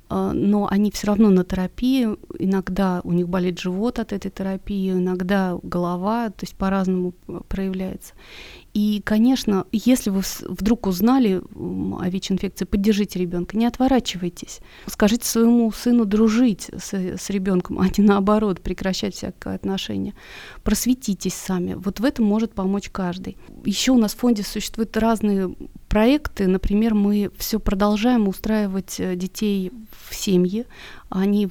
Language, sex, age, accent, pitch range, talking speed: Russian, female, 30-49, native, 185-220 Hz, 135 wpm